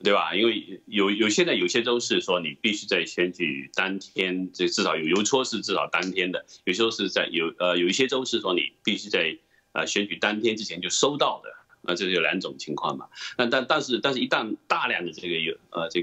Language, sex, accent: Chinese, male, native